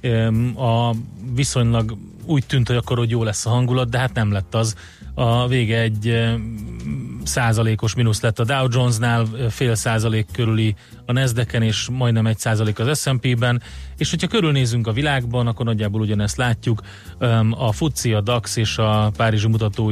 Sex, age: male, 30-49